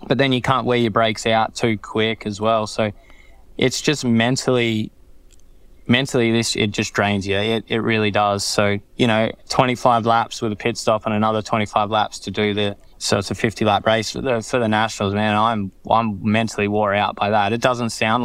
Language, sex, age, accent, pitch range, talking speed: English, male, 10-29, Australian, 105-115 Hz, 210 wpm